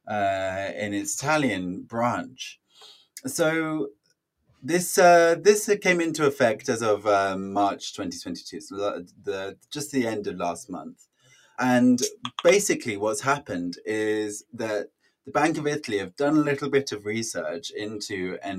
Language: English